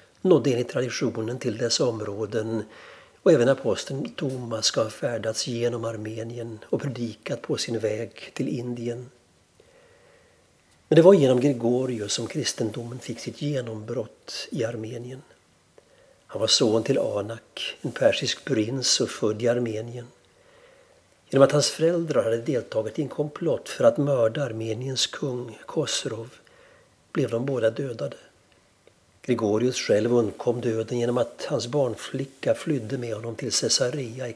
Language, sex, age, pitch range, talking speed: Swedish, male, 60-79, 115-140 Hz, 140 wpm